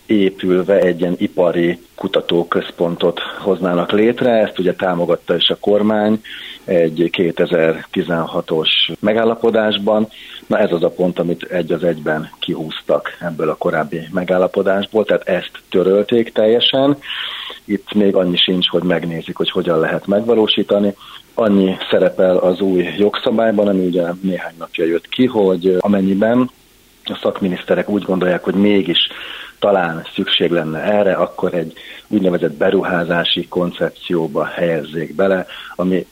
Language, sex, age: Hungarian, male, 40-59